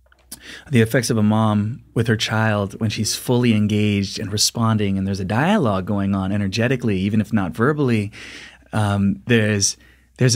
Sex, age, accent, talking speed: male, 30-49, American, 160 wpm